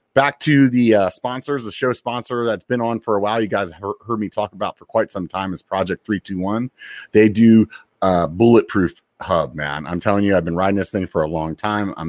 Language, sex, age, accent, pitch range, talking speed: English, male, 30-49, American, 90-115 Hz, 230 wpm